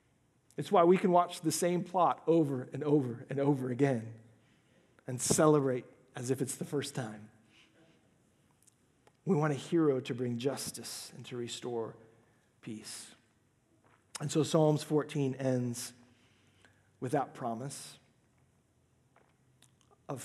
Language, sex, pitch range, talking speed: English, male, 125-165 Hz, 125 wpm